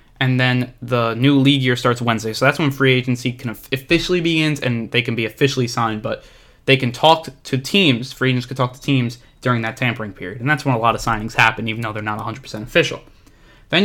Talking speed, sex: 230 wpm, male